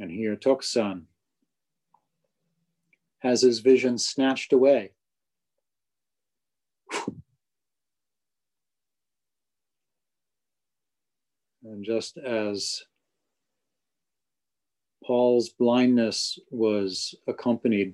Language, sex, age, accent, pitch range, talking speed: English, male, 40-59, American, 105-130 Hz, 50 wpm